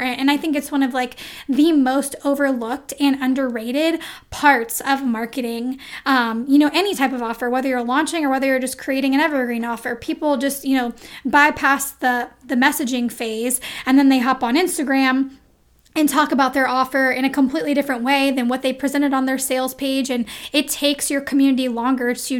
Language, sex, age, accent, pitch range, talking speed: English, female, 10-29, American, 250-290 Hz, 195 wpm